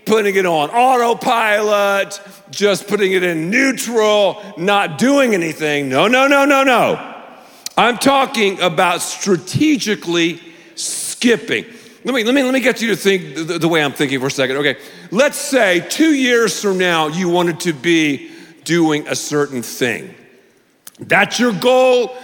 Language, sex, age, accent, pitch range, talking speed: English, male, 50-69, American, 175-250 Hz, 155 wpm